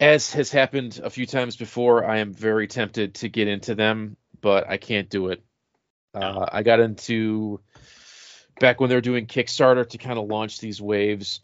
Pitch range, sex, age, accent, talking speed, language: 100-120 Hz, male, 30-49, American, 190 wpm, English